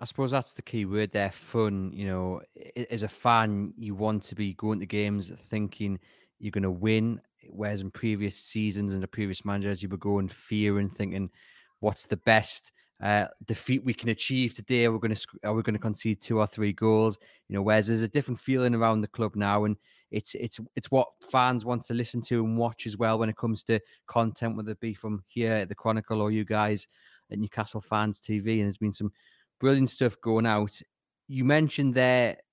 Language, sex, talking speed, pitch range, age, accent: English, male, 210 wpm, 105-120 Hz, 20-39, British